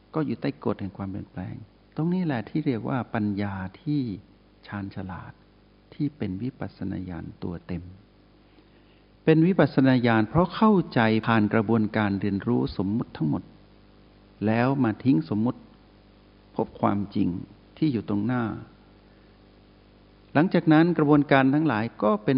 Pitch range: 100-120 Hz